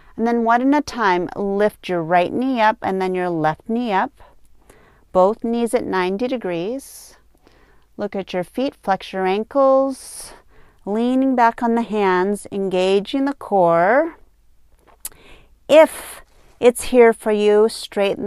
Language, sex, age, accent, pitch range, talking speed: English, female, 30-49, American, 190-250 Hz, 140 wpm